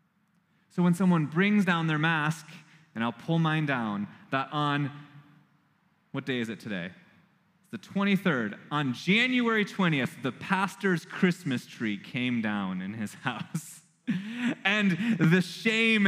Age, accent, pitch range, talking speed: 20-39, American, 160-200 Hz, 140 wpm